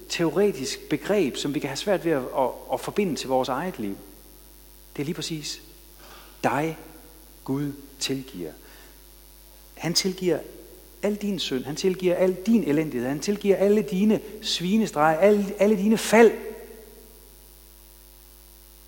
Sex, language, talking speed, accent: male, Danish, 135 wpm, native